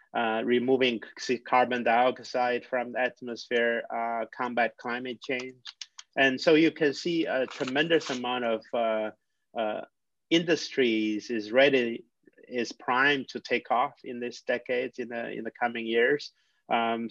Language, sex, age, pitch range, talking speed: English, male, 30-49, 115-125 Hz, 140 wpm